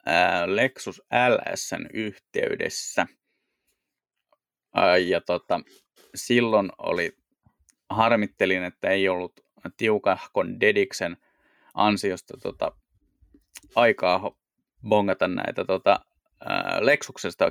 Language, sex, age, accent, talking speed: Finnish, male, 20-39, native, 70 wpm